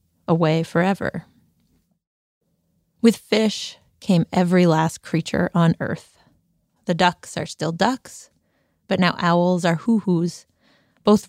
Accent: American